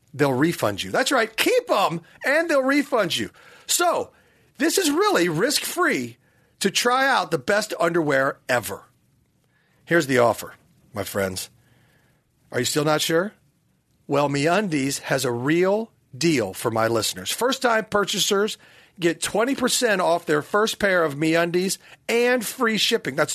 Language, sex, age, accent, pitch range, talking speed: English, male, 40-59, American, 150-230 Hz, 145 wpm